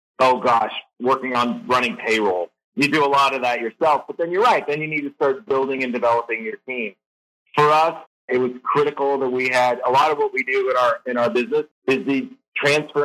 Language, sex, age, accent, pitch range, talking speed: English, male, 30-49, American, 120-145 Hz, 225 wpm